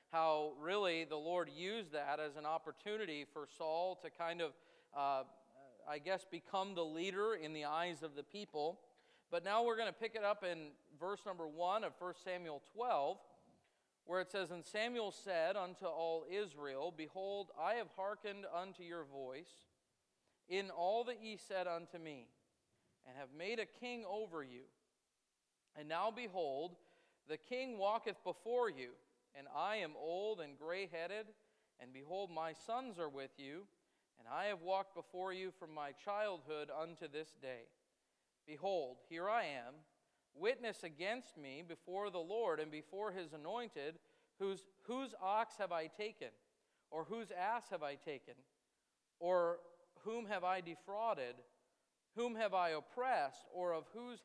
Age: 40-59